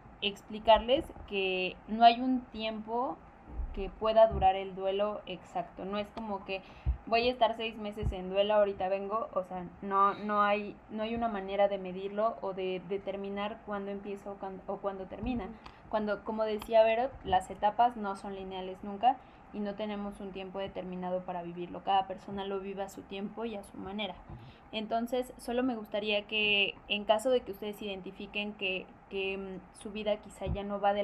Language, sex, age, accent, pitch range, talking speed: Spanish, female, 20-39, Mexican, 195-215 Hz, 180 wpm